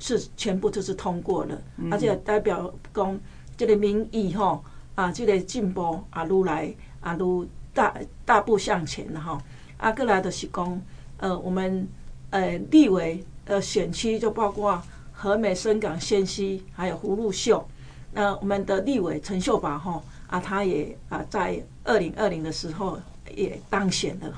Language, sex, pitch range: Chinese, female, 175-210 Hz